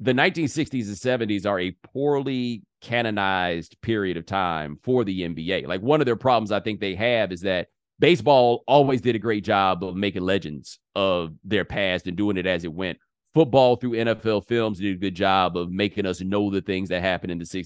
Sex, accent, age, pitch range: male, American, 30-49, 95-145 Hz